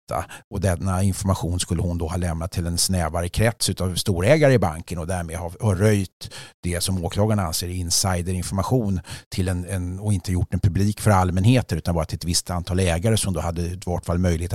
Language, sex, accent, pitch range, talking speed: English, male, Swedish, 85-105 Hz, 200 wpm